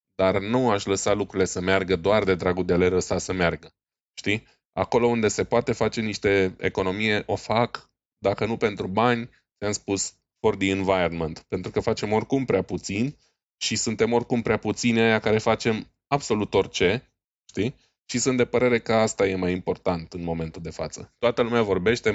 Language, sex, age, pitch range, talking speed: Romanian, male, 20-39, 95-120 Hz, 185 wpm